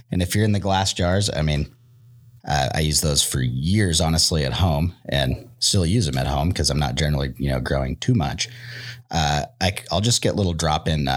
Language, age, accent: English, 30-49, American